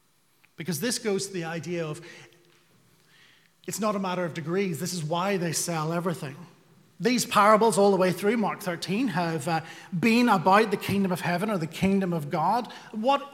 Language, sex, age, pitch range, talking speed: English, male, 30-49, 175-220 Hz, 185 wpm